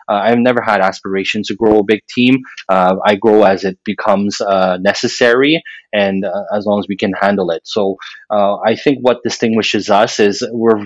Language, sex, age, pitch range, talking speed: English, male, 20-39, 95-110 Hz, 200 wpm